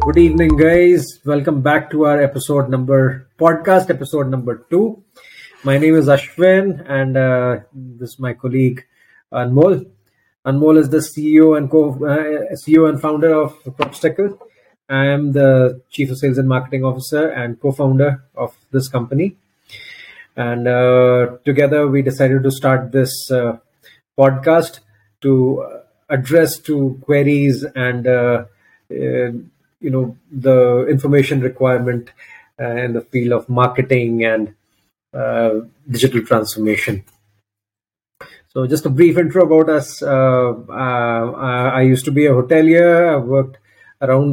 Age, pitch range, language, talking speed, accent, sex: 30-49, 125-145 Hz, Hindi, 140 wpm, native, male